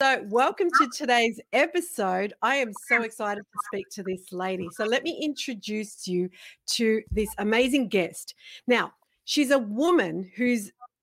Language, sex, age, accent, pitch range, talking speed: English, female, 40-59, Australian, 200-250 Hz, 150 wpm